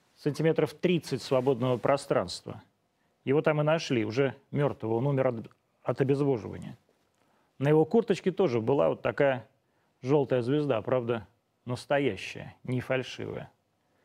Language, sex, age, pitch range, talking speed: Russian, male, 30-49, 125-155 Hz, 120 wpm